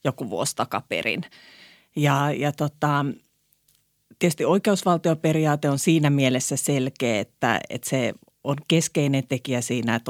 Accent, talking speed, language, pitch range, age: native, 120 wpm, Finnish, 130-150 Hz, 30-49